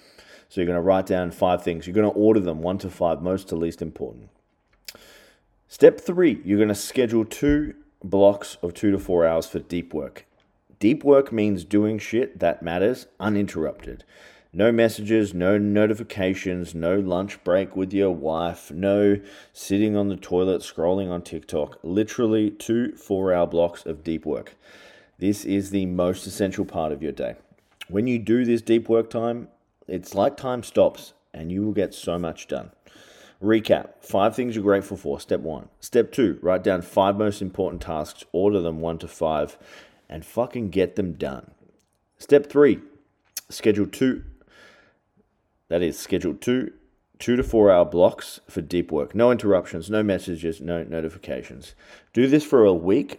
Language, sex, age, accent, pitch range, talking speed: English, male, 30-49, Australian, 90-110 Hz, 165 wpm